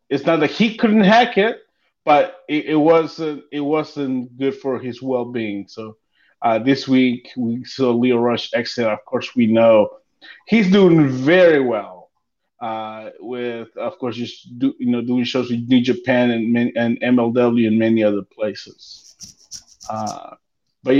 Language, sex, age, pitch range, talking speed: English, male, 30-49, 130-210 Hz, 165 wpm